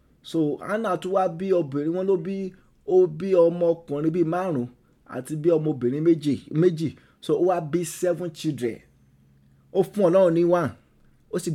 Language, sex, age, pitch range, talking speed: English, male, 30-49, 160-210 Hz, 155 wpm